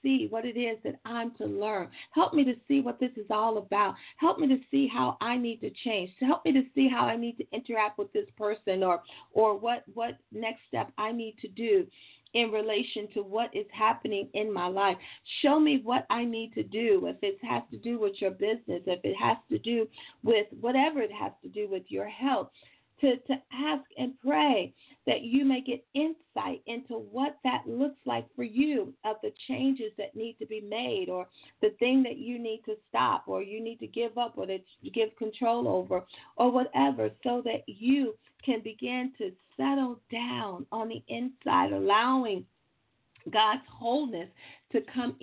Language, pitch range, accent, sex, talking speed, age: English, 215-260 Hz, American, female, 200 wpm, 40-59